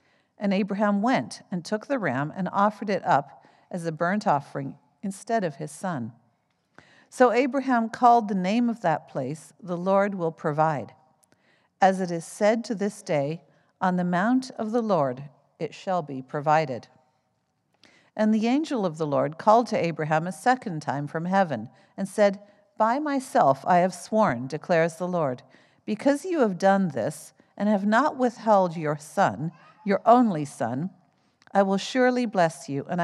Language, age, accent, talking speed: English, 50-69, American, 165 wpm